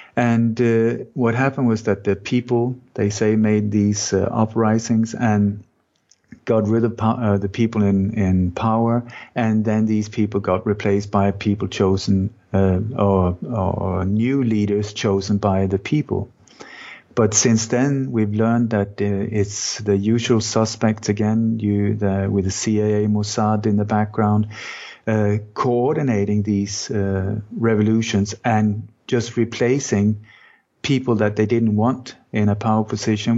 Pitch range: 105-115 Hz